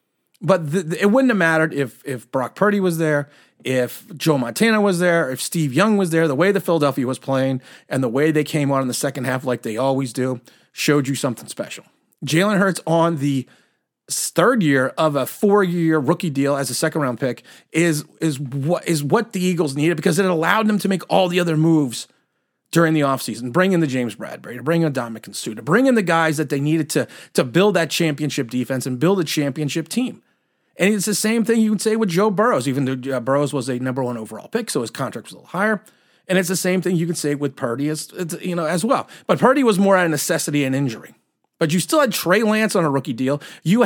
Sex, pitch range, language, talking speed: male, 140-195 Hz, English, 235 wpm